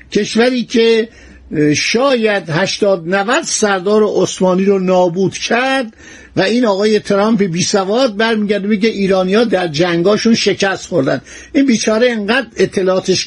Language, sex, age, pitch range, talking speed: Persian, male, 60-79, 180-225 Hz, 120 wpm